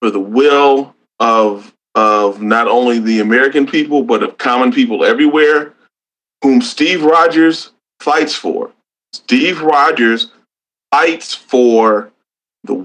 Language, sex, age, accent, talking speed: English, male, 30-49, American, 115 wpm